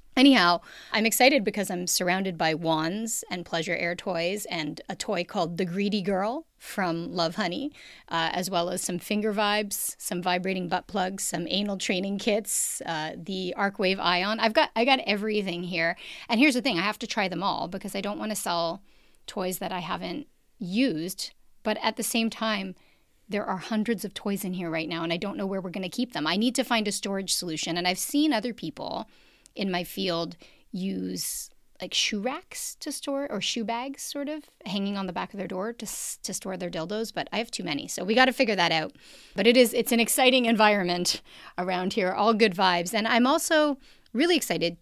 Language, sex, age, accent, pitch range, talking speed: English, female, 30-49, American, 180-230 Hz, 215 wpm